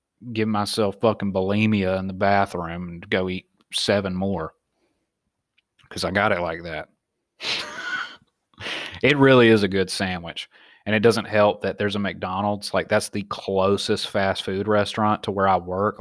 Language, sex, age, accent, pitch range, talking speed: English, male, 30-49, American, 95-110 Hz, 160 wpm